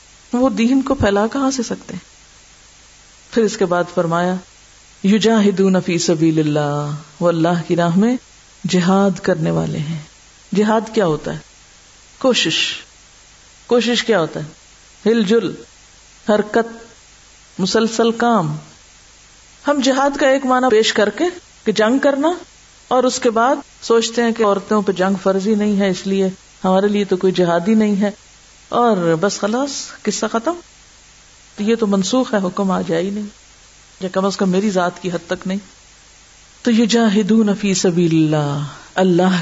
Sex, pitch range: female, 175-225 Hz